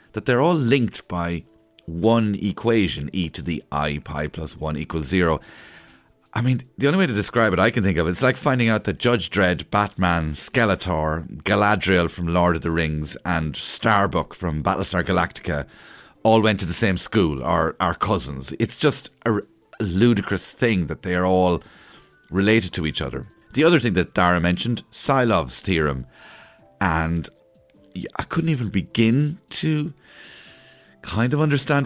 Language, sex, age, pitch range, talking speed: English, male, 40-59, 80-115 Hz, 165 wpm